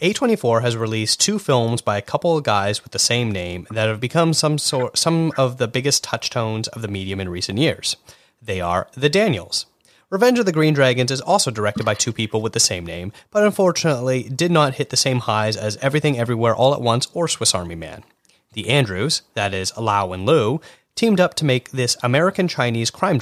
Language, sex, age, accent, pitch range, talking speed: English, male, 30-49, American, 110-155 Hz, 210 wpm